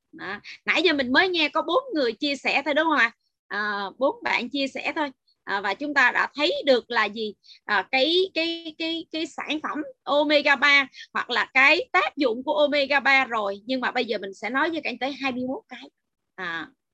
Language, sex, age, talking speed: Vietnamese, female, 20-39, 215 wpm